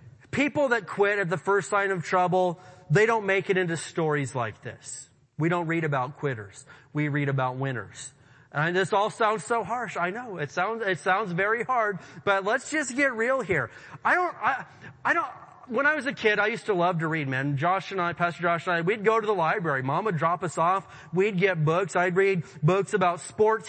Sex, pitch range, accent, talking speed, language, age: male, 145-220 Hz, American, 225 wpm, English, 30-49